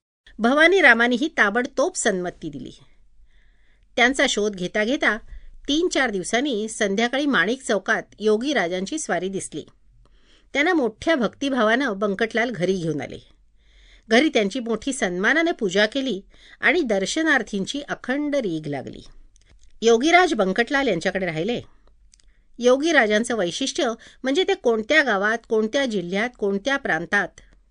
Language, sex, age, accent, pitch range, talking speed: Marathi, female, 50-69, native, 190-275 Hz, 70 wpm